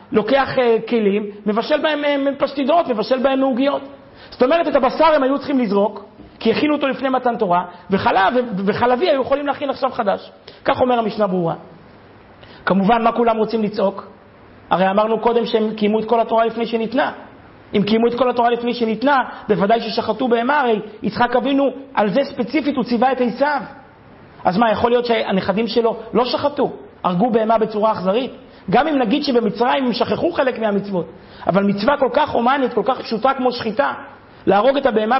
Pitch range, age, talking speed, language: 210-260 Hz, 40-59, 170 wpm, Hebrew